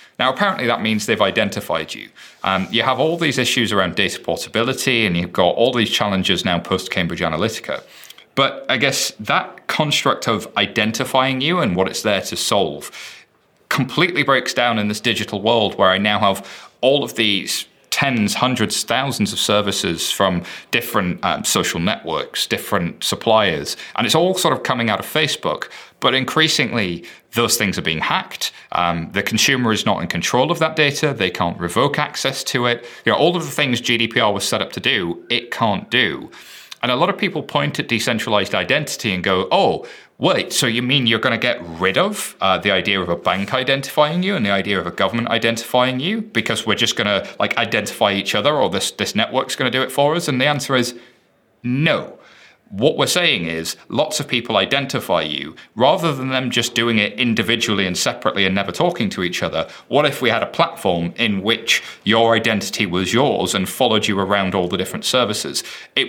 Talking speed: 200 wpm